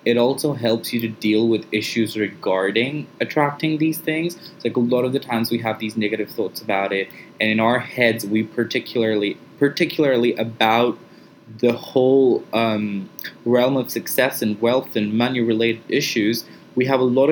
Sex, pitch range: male, 110-130 Hz